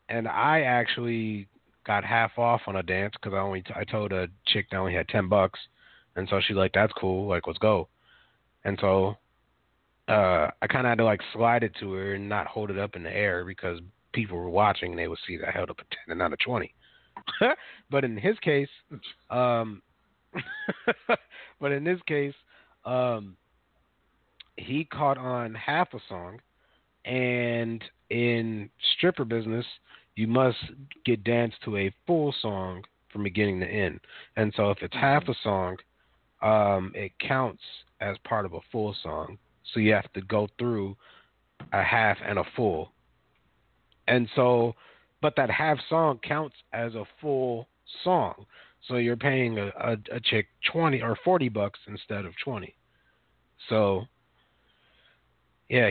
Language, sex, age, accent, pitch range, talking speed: English, male, 30-49, American, 100-125 Hz, 165 wpm